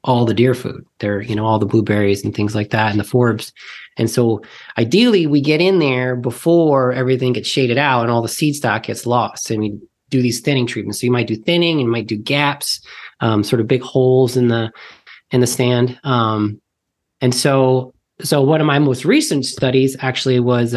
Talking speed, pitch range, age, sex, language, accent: 210 wpm, 110-130 Hz, 30-49, male, English, American